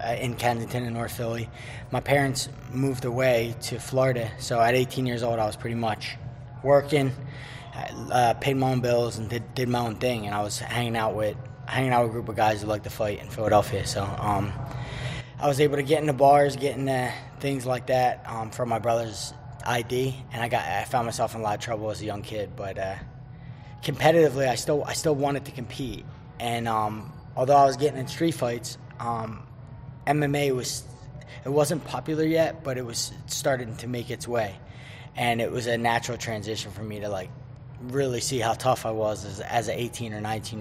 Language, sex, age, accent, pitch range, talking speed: English, male, 20-39, American, 115-135 Hz, 210 wpm